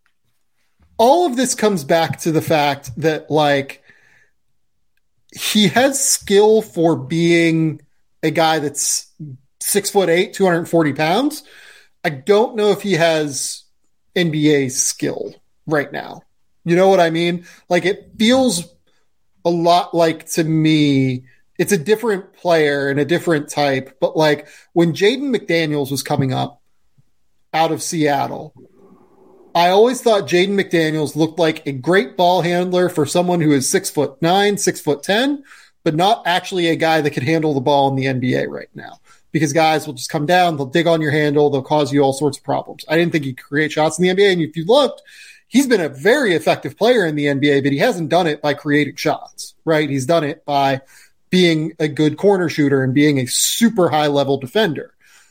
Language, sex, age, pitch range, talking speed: English, male, 30-49, 145-185 Hz, 180 wpm